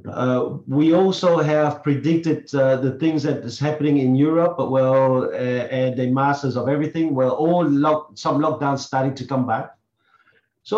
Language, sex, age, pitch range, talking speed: English, male, 50-69, 130-155 Hz, 175 wpm